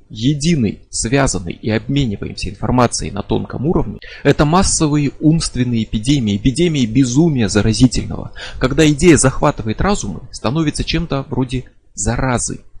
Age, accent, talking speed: 20-39, native, 110 wpm